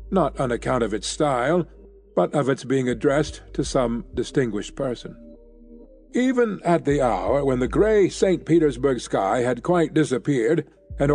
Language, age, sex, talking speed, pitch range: English, 50-69, male, 155 wpm, 125-160 Hz